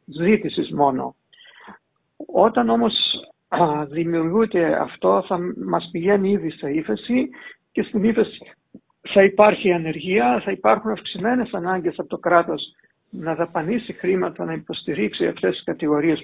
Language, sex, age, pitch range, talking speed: Greek, male, 60-79, 165-220 Hz, 120 wpm